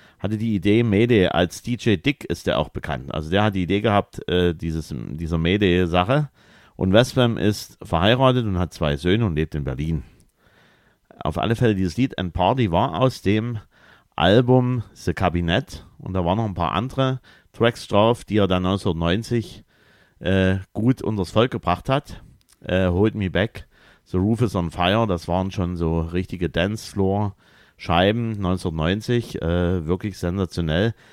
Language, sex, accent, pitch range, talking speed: German, male, German, 90-115 Hz, 165 wpm